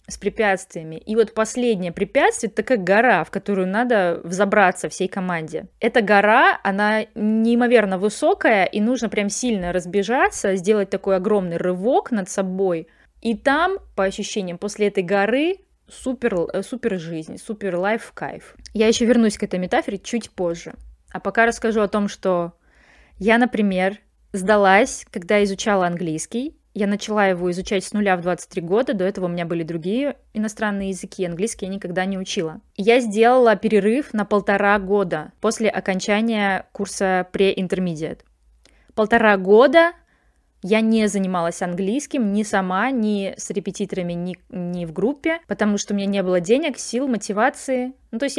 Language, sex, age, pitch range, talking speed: Russian, female, 20-39, 190-230 Hz, 155 wpm